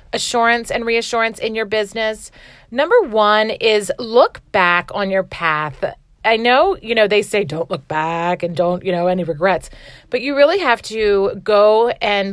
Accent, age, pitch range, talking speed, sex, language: American, 40-59, 185-240 Hz, 175 wpm, female, English